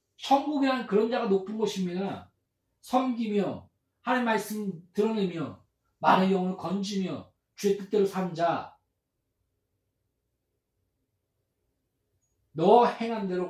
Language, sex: Korean, male